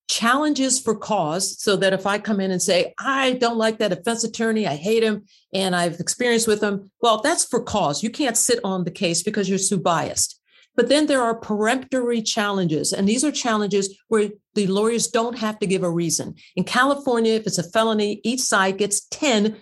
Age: 50-69